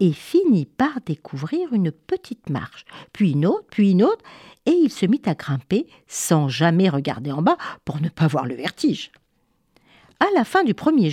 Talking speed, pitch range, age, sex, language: 190 wpm, 160-255 Hz, 50-69, female, French